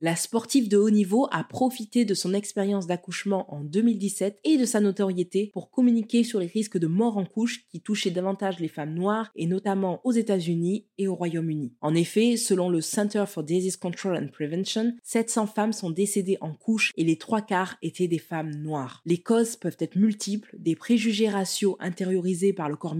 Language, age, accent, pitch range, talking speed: French, 20-39, French, 175-220 Hz, 200 wpm